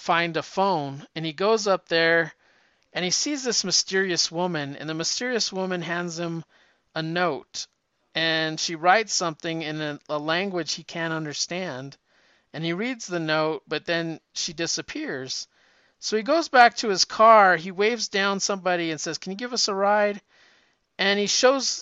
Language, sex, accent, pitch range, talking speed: English, male, American, 165-215 Hz, 175 wpm